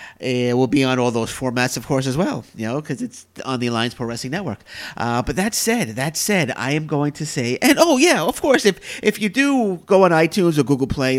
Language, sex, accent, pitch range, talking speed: English, male, American, 115-165 Hz, 250 wpm